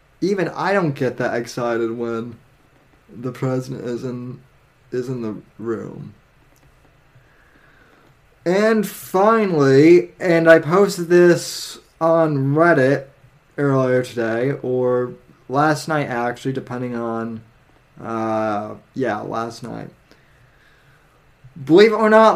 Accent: American